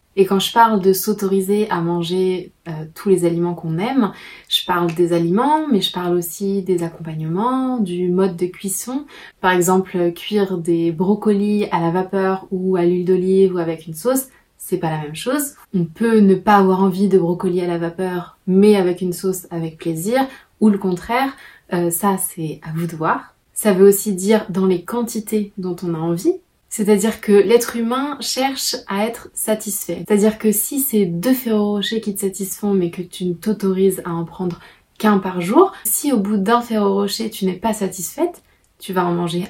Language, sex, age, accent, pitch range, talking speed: French, female, 20-39, French, 180-225 Hz, 195 wpm